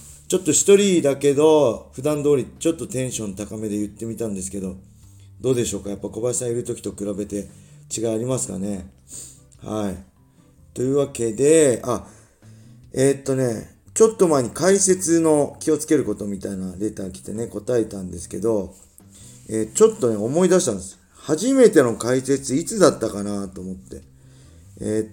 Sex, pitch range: male, 100-145 Hz